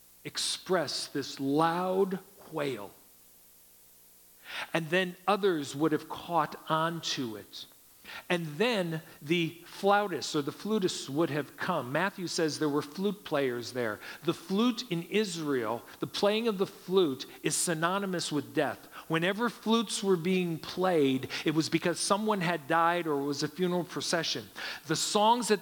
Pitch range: 155-200 Hz